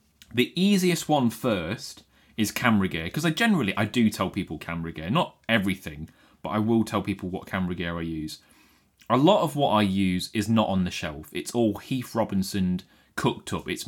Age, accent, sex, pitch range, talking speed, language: 30-49, British, male, 90-110 Hz, 200 wpm, English